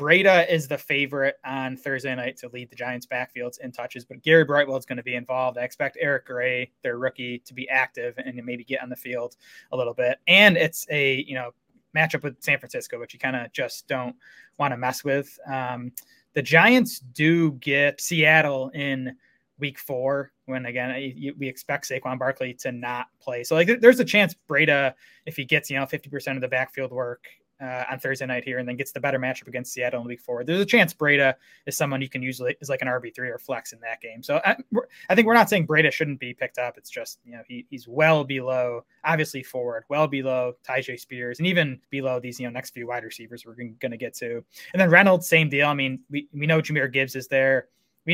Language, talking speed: English, 230 wpm